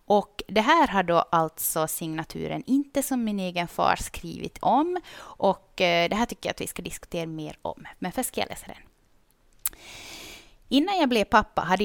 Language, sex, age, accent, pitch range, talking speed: Swedish, female, 30-49, native, 175-245 Hz, 180 wpm